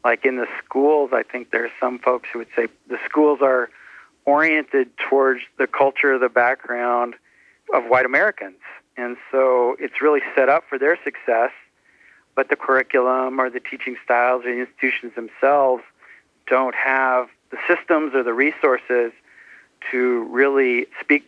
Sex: male